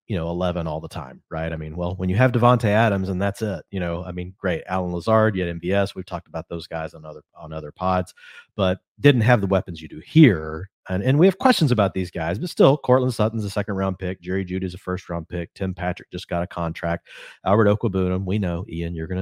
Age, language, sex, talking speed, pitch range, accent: 30-49, English, male, 255 wpm, 90-110 Hz, American